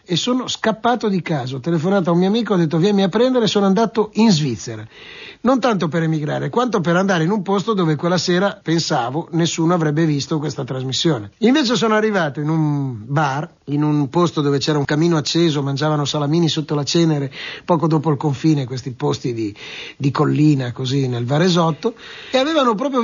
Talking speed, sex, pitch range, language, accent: 195 wpm, male, 145-200 Hz, Italian, native